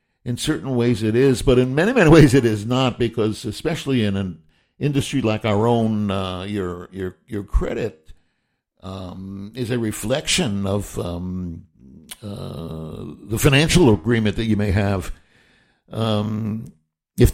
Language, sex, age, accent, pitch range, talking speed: English, male, 60-79, American, 105-145 Hz, 145 wpm